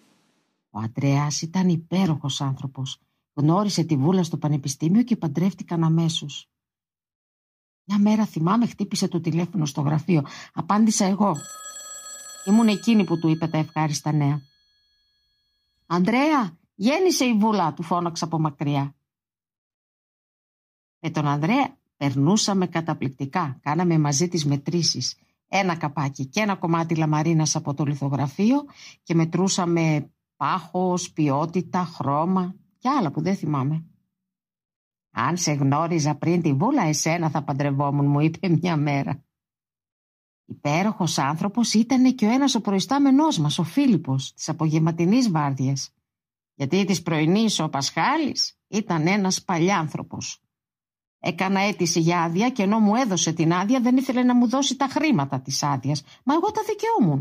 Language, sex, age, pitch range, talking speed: Greek, female, 50-69, 145-200 Hz, 130 wpm